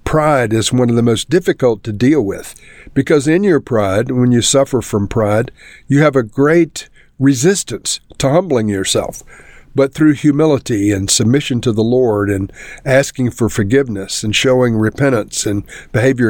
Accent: American